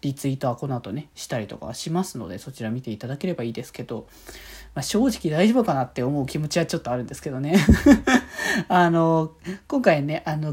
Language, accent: Japanese, native